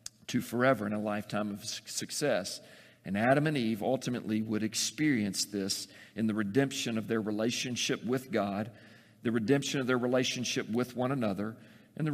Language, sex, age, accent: English, male, 50-69, American